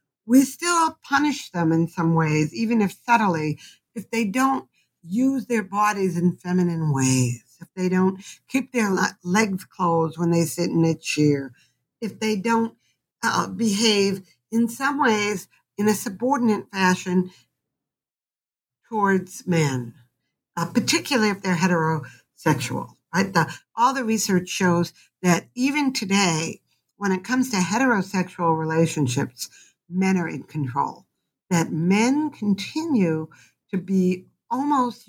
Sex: female